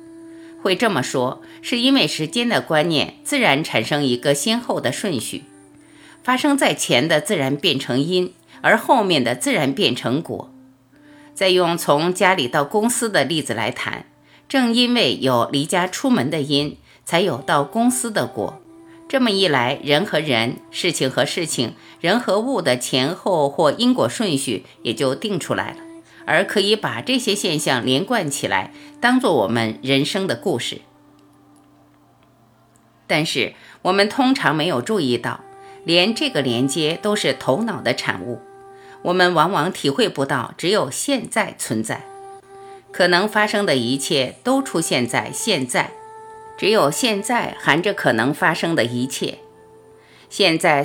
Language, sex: Chinese, female